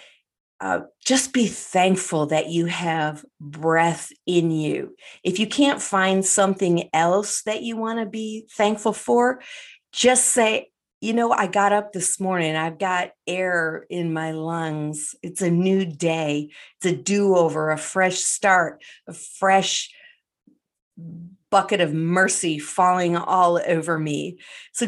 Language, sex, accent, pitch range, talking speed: English, female, American, 170-210 Hz, 140 wpm